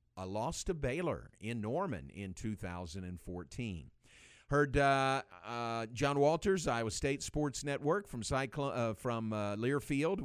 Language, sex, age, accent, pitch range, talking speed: English, male, 50-69, American, 105-135 Hz, 135 wpm